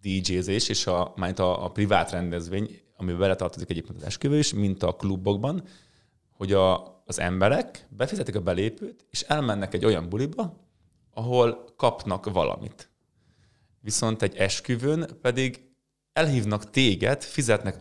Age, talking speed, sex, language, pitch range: 20-39, 130 wpm, male, Hungarian, 95-125 Hz